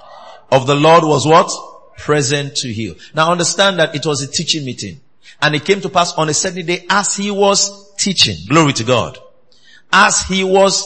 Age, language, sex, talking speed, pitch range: 50-69, English, male, 195 wpm, 140-195 Hz